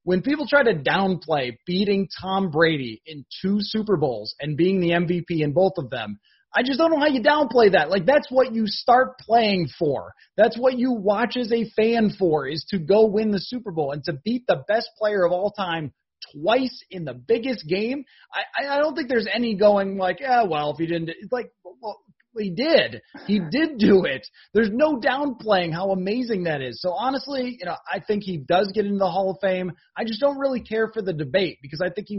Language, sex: English, male